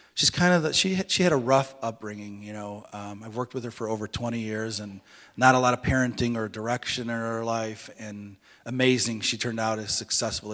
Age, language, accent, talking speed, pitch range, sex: 30-49, English, American, 220 wpm, 110-130 Hz, male